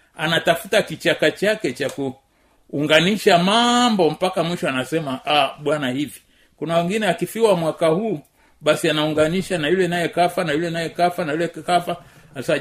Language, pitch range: Swahili, 145-185 Hz